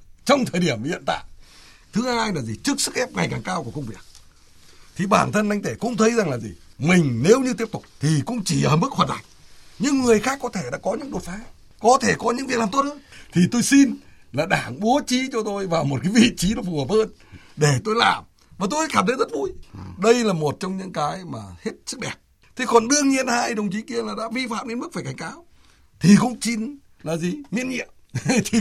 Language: Vietnamese